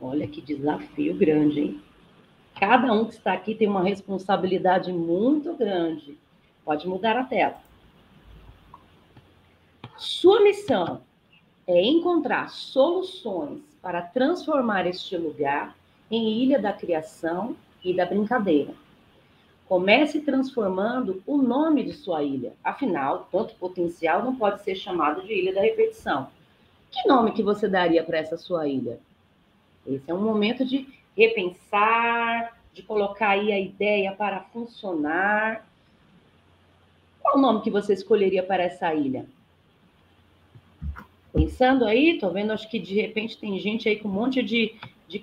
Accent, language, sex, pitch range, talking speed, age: Brazilian, Portuguese, female, 185-255 Hz, 130 wpm, 40-59